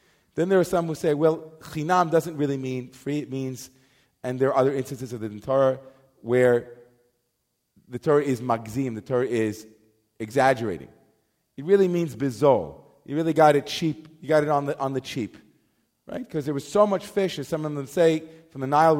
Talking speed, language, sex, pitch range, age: 200 wpm, English, male, 125-160 Hz, 40-59